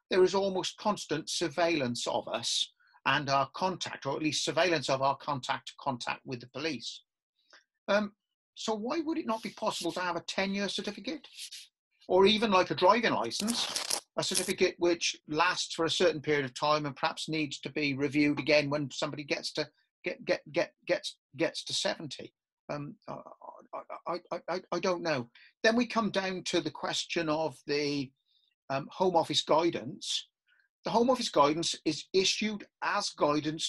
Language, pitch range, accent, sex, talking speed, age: English, 150-205 Hz, British, male, 170 wpm, 40-59